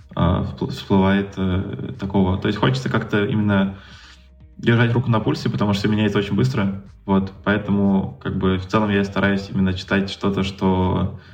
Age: 20-39